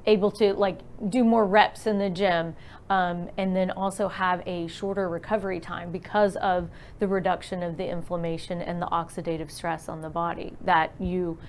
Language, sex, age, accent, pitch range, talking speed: English, female, 30-49, American, 180-215 Hz, 180 wpm